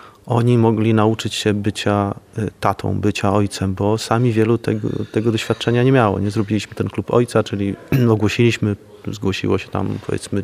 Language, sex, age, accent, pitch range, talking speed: Polish, male, 30-49, native, 105-120 Hz, 155 wpm